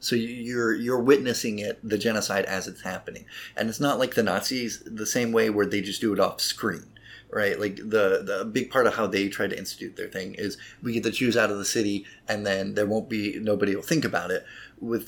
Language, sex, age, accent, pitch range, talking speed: English, male, 30-49, American, 105-125 Hz, 240 wpm